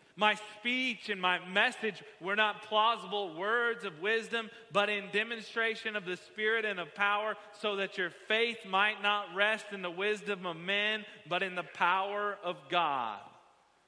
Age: 30-49